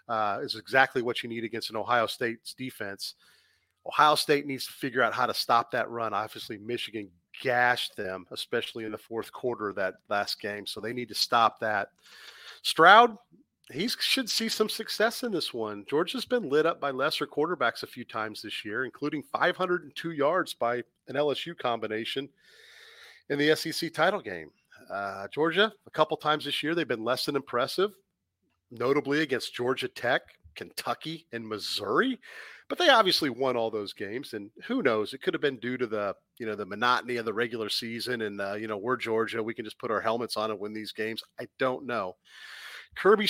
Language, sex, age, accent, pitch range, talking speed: English, male, 40-59, American, 115-175 Hz, 195 wpm